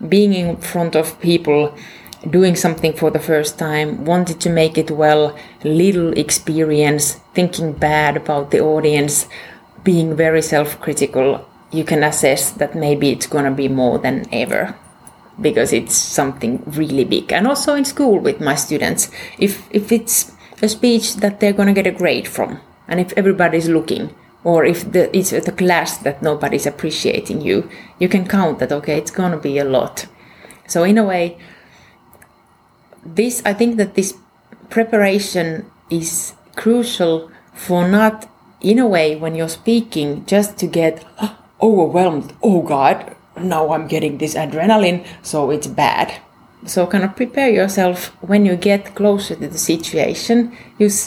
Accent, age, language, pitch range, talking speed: Finnish, 30-49, English, 155-205 Hz, 160 wpm